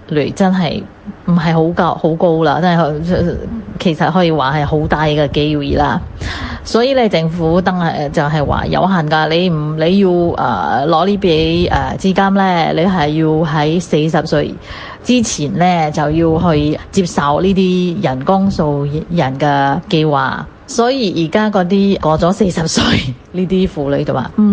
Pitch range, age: 155-200 Hz, 20-39